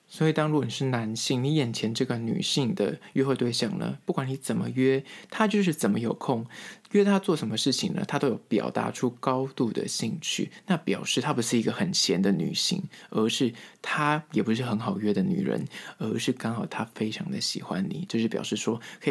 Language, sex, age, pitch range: Chinese, male, 20-39, 115-155 Hz